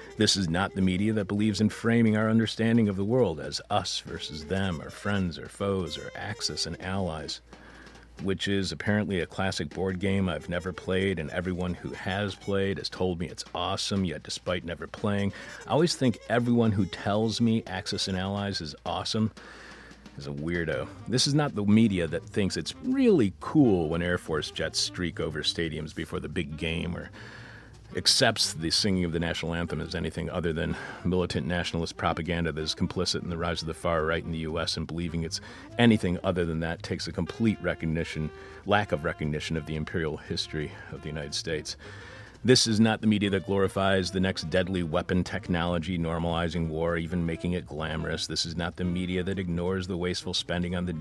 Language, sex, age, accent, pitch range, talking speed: English, male, 40-59, American, 85-100 Hz, 195 wpm